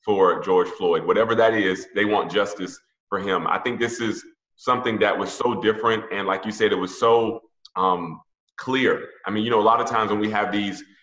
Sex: male